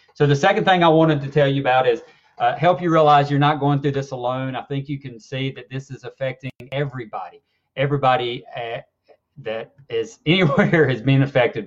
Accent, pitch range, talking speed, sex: American, 125-150 Hz, 200 wpm, male